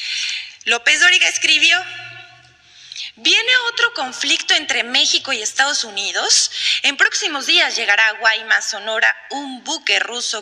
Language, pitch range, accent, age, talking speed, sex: Spanish, 230-365 Hz, Mexican, 20-39, 120 wpm, female